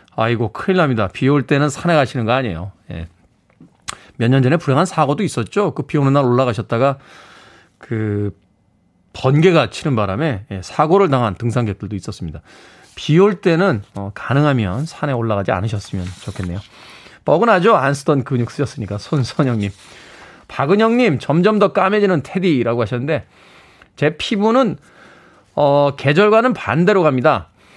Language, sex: Korean, male